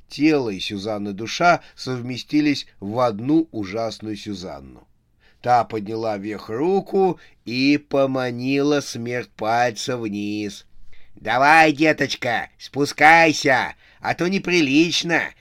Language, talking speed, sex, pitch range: Russian, 95 wpm, male, 105-145 Hz